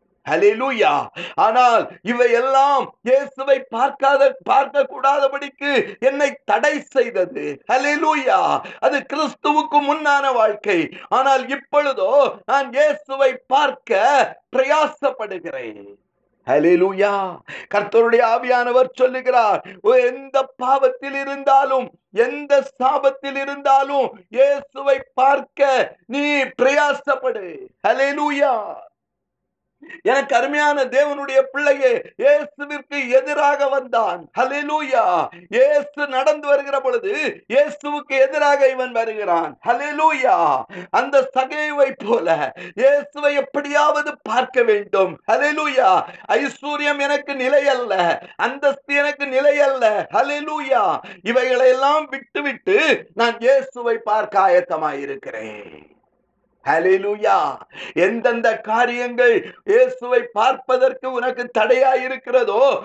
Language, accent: Tamil, native